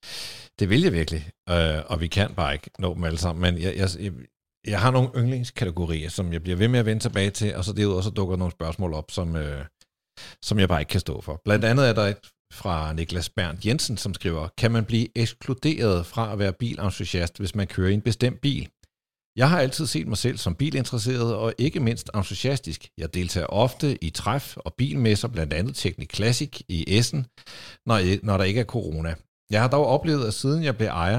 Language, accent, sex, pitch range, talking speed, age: Danish, native, male, 95-130 Hz, 215 wpm, 60-79